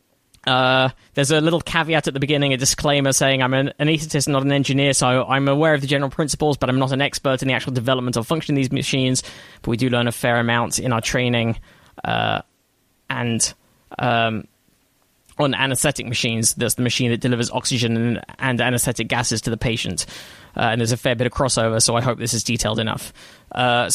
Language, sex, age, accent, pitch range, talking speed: English, male, 10-29, British, 120-145 Hz, 205 wpm